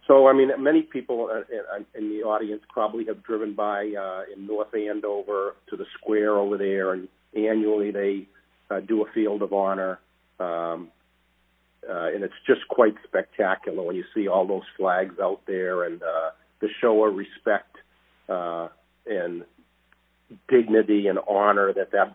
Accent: American